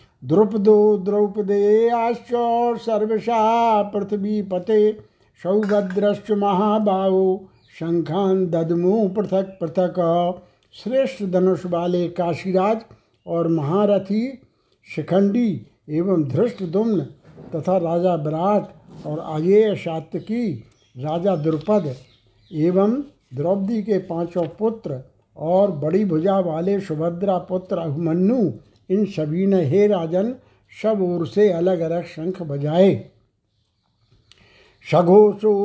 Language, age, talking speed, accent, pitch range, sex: Hindi, 60-79, 95 wpm, native, 165-205 Hz, male